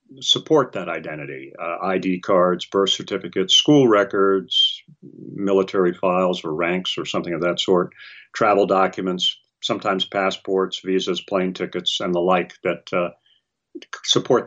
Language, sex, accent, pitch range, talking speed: English, male, American, 90-115 Hz, 135 wpm